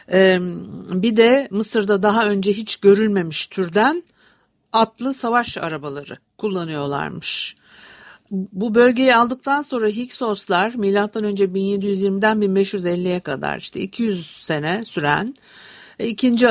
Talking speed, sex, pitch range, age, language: 100 wpm, female, 180-230 Hz, 60-79, Turkish